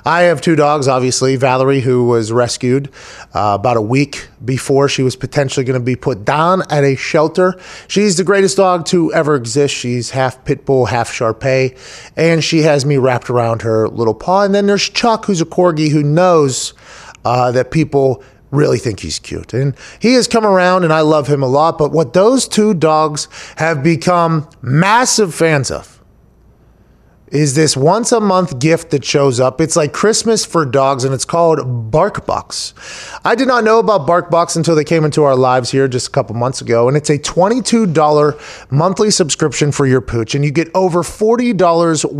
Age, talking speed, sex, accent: 30-49, 190 wpm, male, American